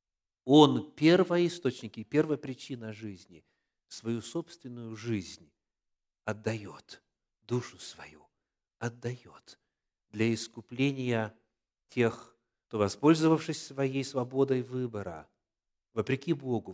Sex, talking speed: male, 80 wpm